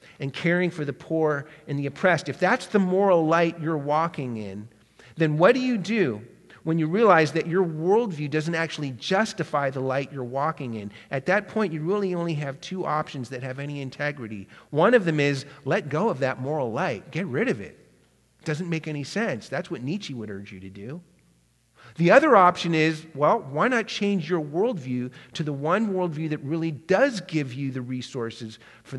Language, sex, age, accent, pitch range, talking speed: English, male, 40-59, American, 130-180 Hz, 200 wpm